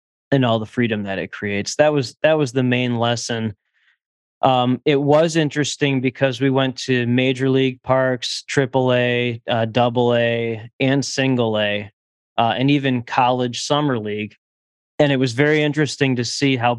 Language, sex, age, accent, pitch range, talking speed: English, male, 20-39, American, 100-125 Hz, 160 wpm